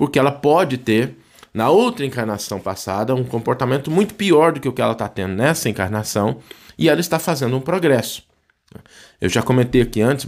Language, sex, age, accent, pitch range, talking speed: Portuguese, male, 20-39, Brazilian, 100-135 Hz, 185 wpm